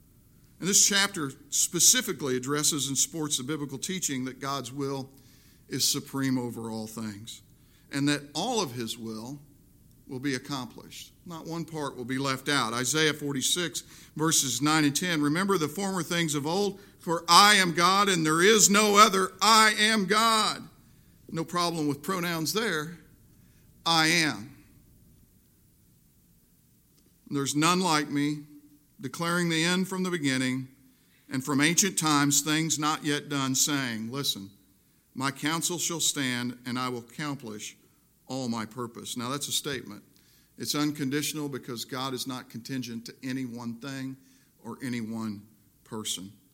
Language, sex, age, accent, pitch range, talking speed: English, male, 50-69, American, 125-160 Hz, 150 wpm